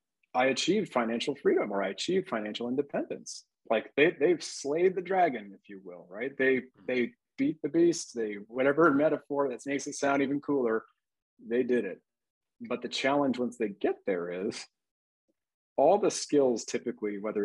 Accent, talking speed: American, 170 wpm